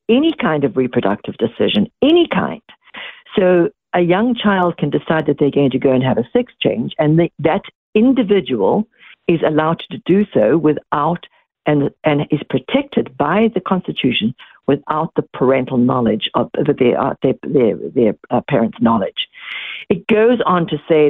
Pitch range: 140-210 Hz